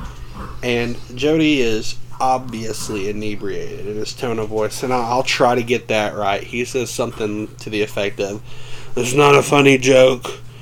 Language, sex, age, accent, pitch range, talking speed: English, male, 30-49, American, 110-130 Hz, 165 wpm